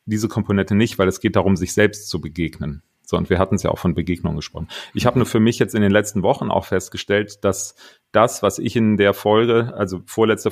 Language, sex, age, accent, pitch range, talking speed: German, male, 40-59, German, 95-120 Hz, 240 wpm